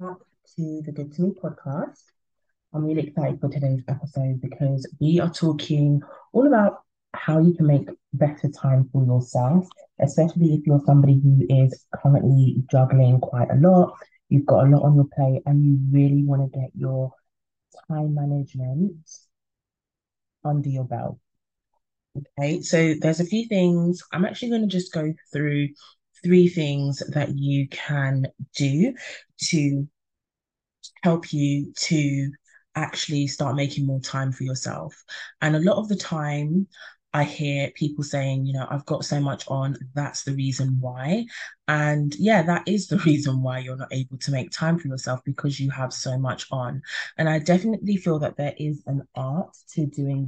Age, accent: 30-49, British